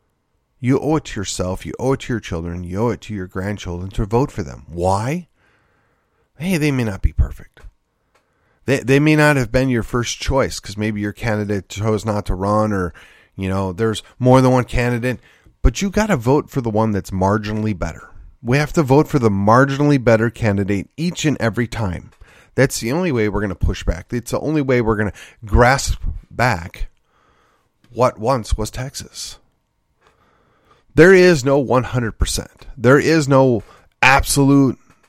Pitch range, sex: 100-135 Hz, male